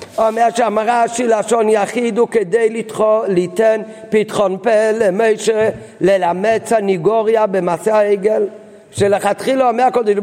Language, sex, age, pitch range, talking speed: Hebrew, male, 50-69, 200-245 Hz, 100 wpm